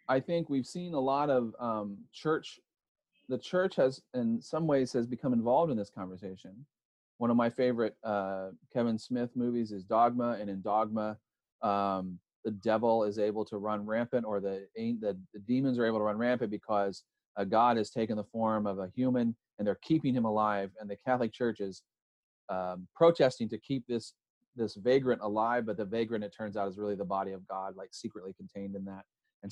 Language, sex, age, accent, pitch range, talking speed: English, male, 30-49, American, 105-130 Hz, 200 wpm